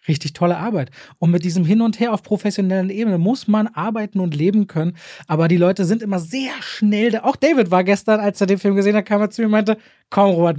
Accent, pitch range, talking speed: German, 175-215 Hz, 250 wpm